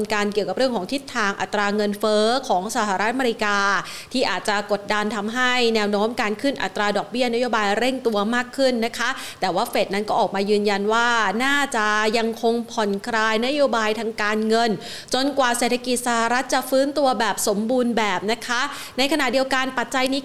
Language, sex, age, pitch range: Thai, female, 30-49, 210-255 Hz